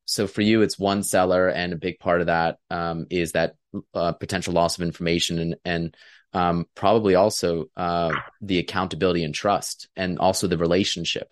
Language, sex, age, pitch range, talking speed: English, male, 20-39, 85-95 Hz, 180 wpm